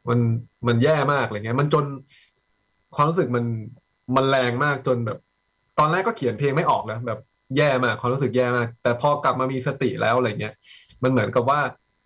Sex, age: male, 20-39